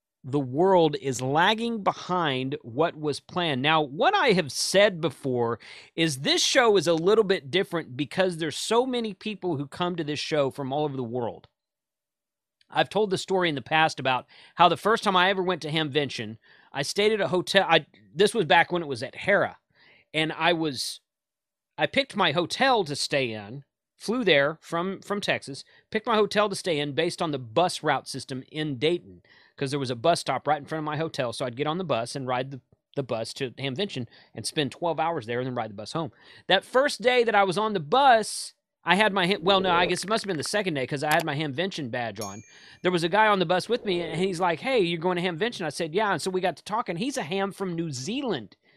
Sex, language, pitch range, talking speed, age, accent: male, English, 145-195 Hz, 240 wpm, 40-59, American